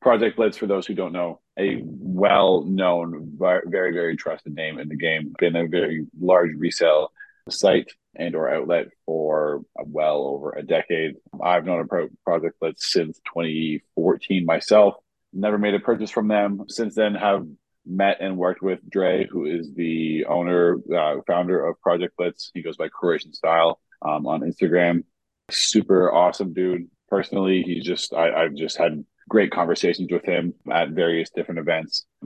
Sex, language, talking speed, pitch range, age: male, English, 165 wpm, 80-95 Hz, 30-49